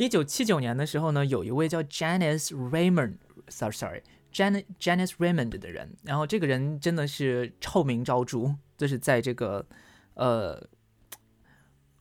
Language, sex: Chinese, male